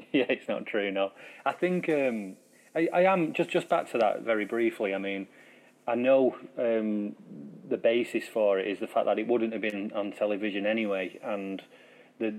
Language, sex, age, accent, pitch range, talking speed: English, male, 30-49, British, 100-115 Hz, 195 wpm